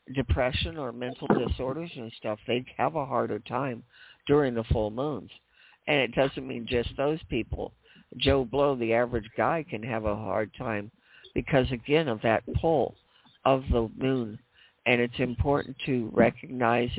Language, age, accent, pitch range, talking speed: English, 50-69, American, 115-130 Hz, 160 wpm